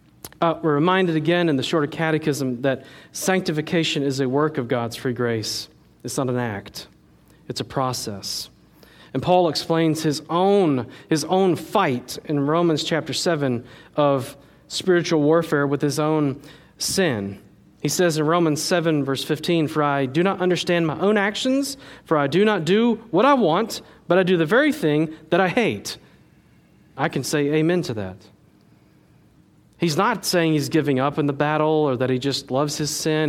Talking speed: 175 wpm